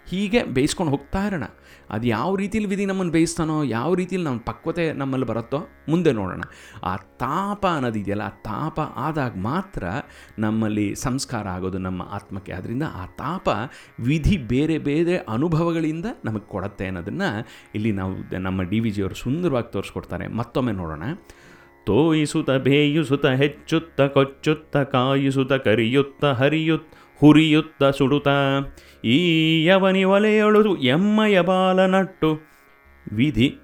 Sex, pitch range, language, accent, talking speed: male, 100-150 Hz, Kannada, native, 115 wpm